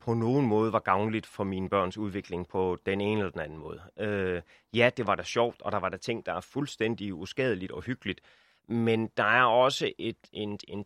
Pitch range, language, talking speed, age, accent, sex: 100-115 Hz, Danish, 210 wpm, 30-49, native, male